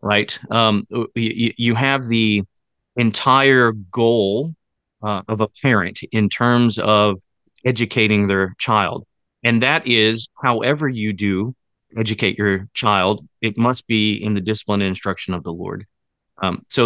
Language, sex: English, male